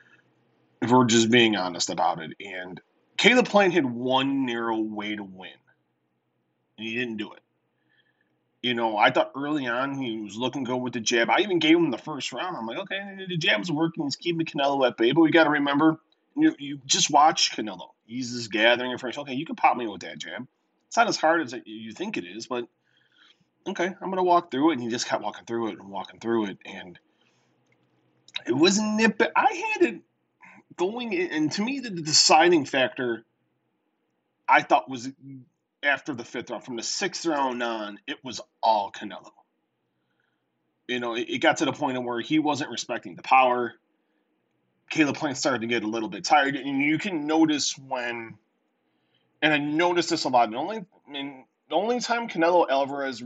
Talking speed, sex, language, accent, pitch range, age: 195 wpm, male, English, American, 115-165 Hz, 30-49